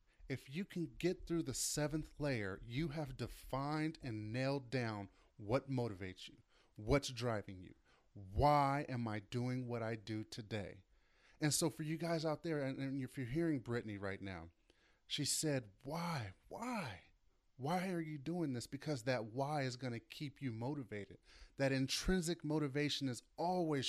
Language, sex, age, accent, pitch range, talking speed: English, male, 30-49, American, 115-160 Hz, 165 wpm